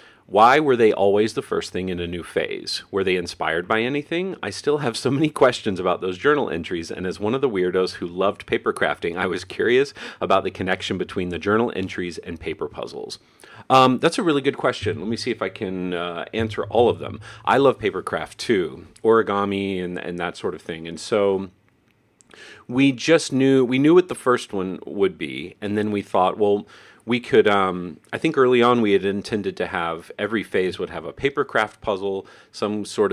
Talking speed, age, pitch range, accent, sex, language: 215 wpm, 40-59, 95-125 Hz, American, male, English